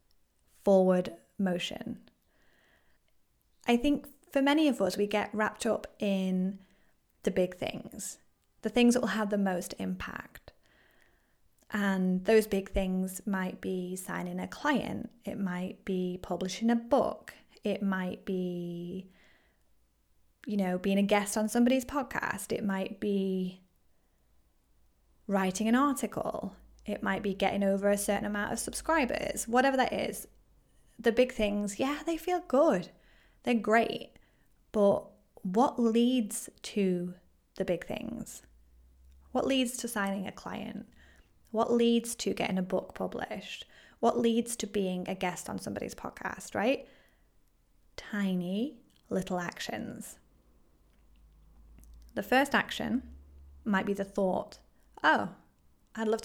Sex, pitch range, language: female, 180-230 Hz, English